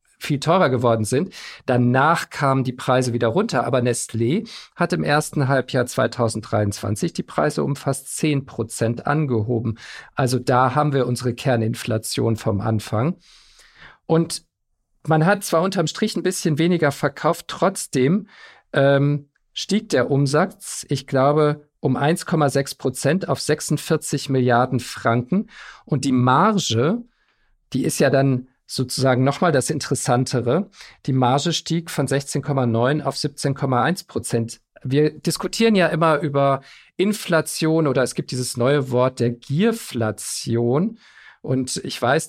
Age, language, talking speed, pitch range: 50-69, German, 130 wpm, 125-155 Hz